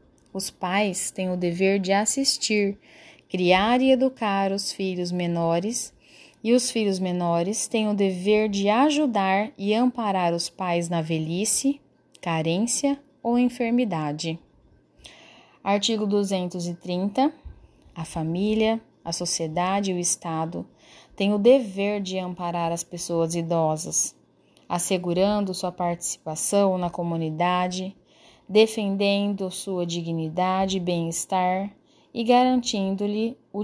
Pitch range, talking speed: 175-215 Hz, 110 wpm